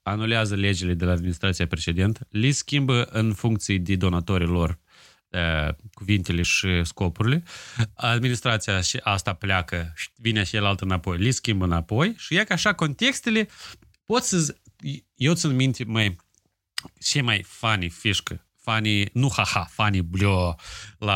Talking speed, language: 140 wpm, Romanian